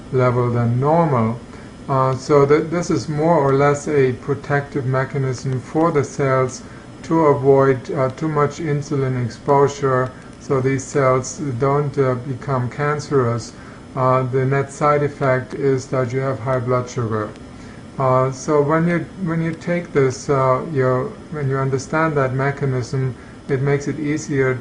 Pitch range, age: 125-140 Hz, 50-69